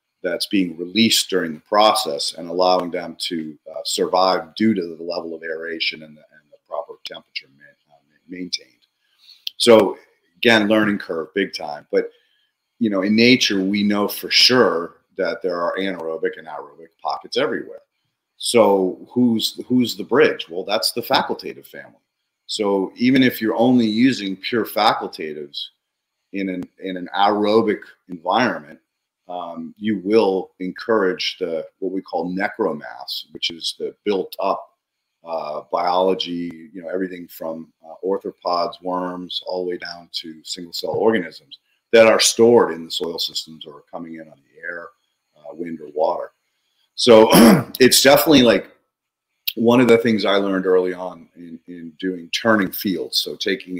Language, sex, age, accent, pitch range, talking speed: English, male, 40-59, American, 85-110 Hz, 160 wpm